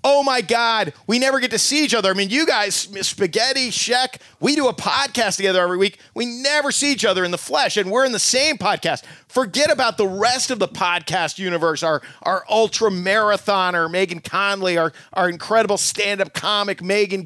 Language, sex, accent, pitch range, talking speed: English, male, American, 195-265 Hz, 200 wpm